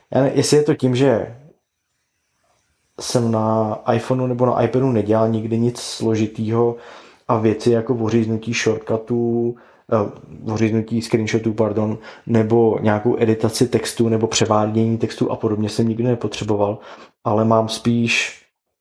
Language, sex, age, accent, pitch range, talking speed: Czech, male, 20-39, native, 105-115 Hz, 120 wpm